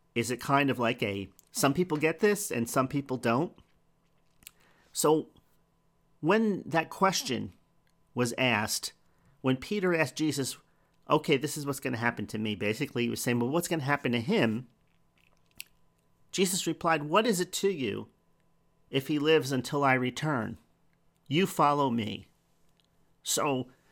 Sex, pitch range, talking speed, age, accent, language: male, 115-155 Hz, 155 wpm, 40-59, American, English